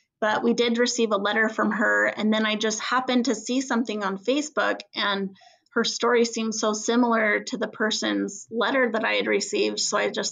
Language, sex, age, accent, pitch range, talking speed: English, female, 20-39, American, 205-235 Hz, 205 wpm